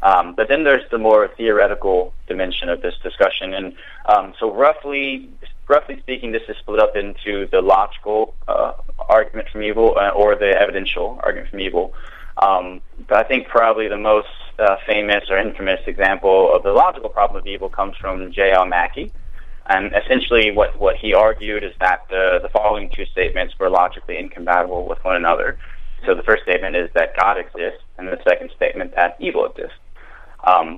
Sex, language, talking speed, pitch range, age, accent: male, English, 180 wpm, 95-130 Hz, 20-39, American